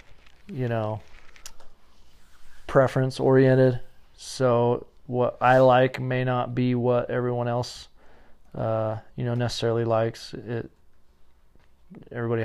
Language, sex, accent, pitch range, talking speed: English, male, American, 115-125 Hz, 100 wpm